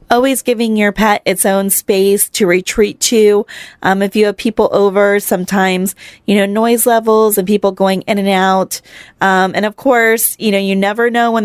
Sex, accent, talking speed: female, American, 195 wpm